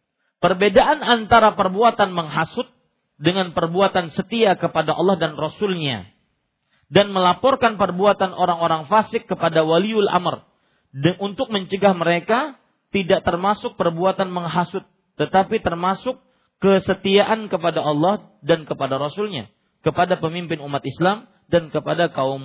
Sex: male